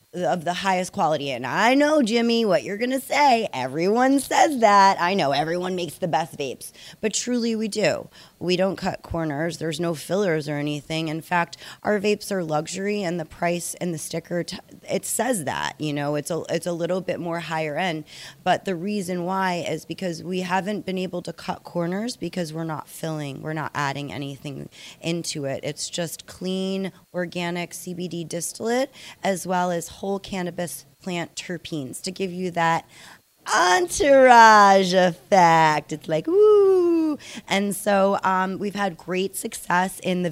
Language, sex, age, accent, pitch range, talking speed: English, female, 20-39, American, 160-190 Hz, 170 wpm